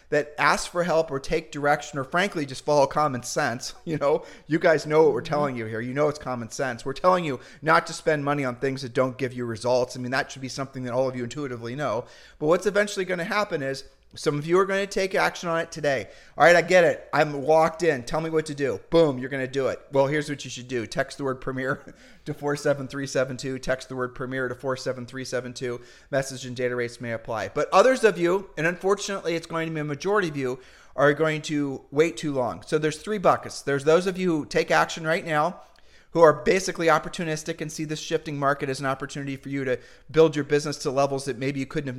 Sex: male